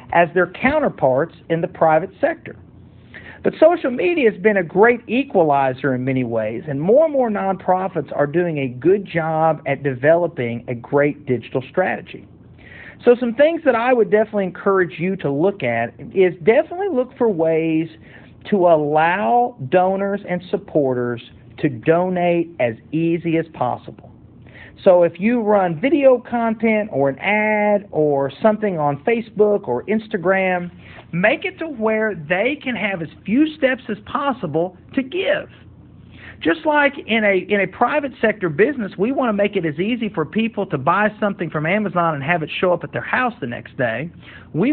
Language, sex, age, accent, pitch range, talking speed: English, male, 50-69, American, 155-220 Hz, 170 wpm